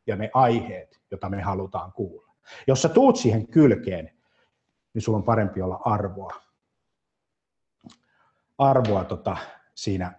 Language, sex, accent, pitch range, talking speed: Finnish, male, native, 95-120 Hz, 125 wpm